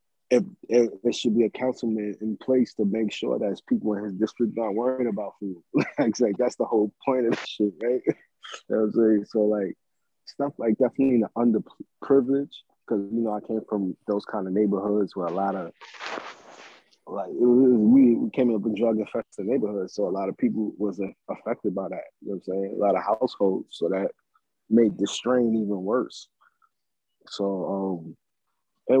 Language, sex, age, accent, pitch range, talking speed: English, male, 20-39, American, 100-115 Hz, 190 wpm